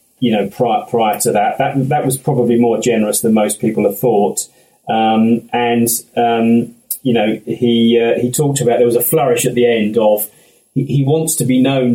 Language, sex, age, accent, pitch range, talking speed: English, male, 30-49, British, 115-140 Hz, 205 wpm